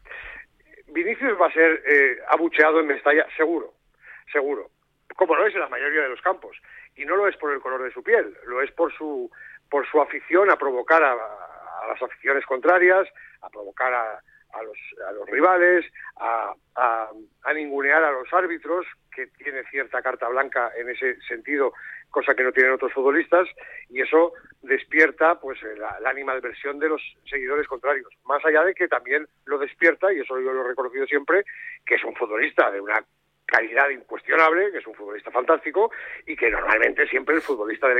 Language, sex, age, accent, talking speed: Spanish, male, 60-79, Spanish, 185 wpm